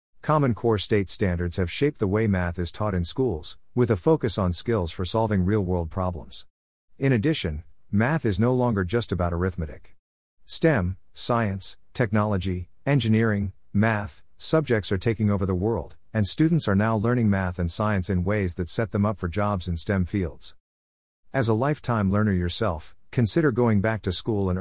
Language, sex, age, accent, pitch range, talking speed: English, male, 50-69, American, 90-115 Hz, 175 wpm